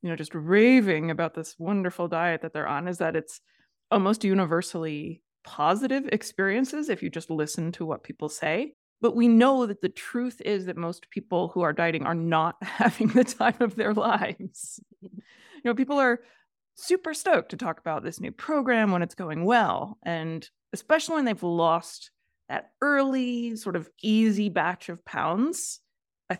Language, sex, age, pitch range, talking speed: English, female, 20-39, 165-230 Hz, 175 wpm